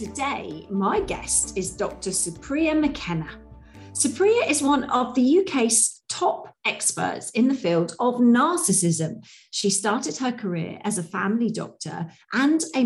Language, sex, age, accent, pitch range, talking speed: English, female, 40-59, British, 175-250 Hz, 140 wpm